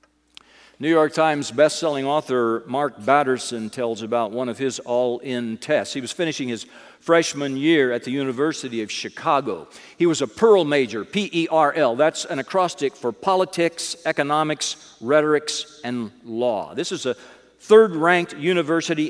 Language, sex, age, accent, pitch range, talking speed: English, male, 50-69, American, 120-160 Hz, 140 wpm